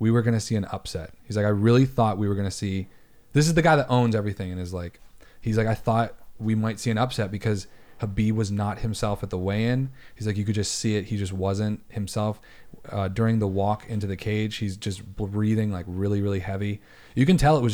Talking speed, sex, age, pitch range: 245 wpm, male, 30-49, 100-125 Hz